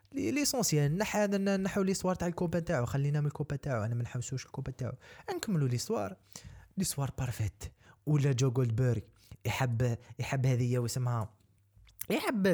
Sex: male